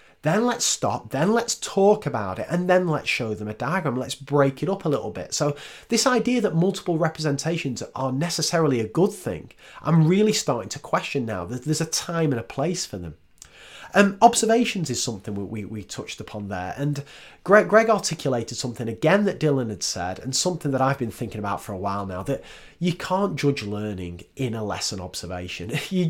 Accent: British